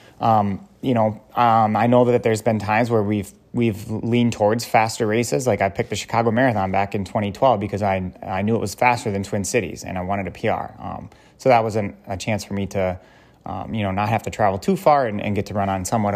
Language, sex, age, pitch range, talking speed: English, male, 30-49, 100-120 Hz, 245 wpm